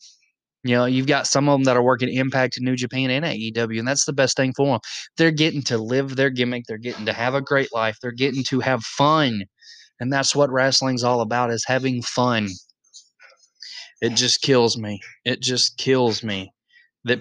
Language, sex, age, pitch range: English, male, 20-39, 110-135 Hz